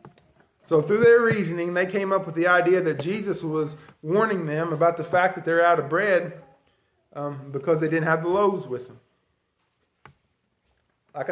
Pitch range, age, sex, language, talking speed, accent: 145-180 Hz, 20-39, male, English, 175 wpm, American